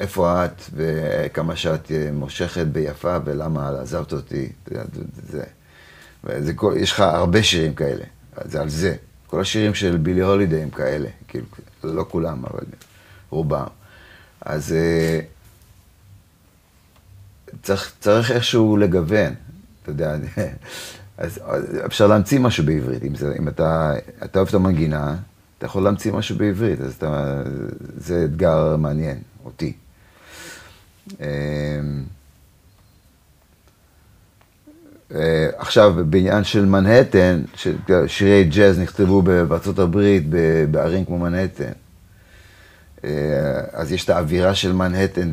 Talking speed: 100 wpm